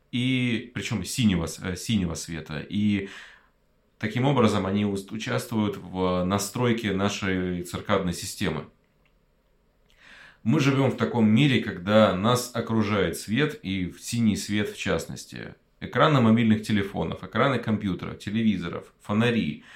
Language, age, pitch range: Russian, 30-49, 90-110 Hz